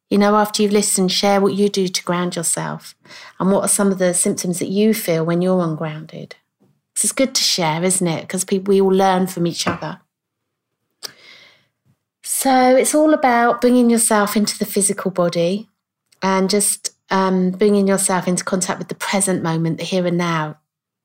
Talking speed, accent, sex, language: 180 wpm, British, female, English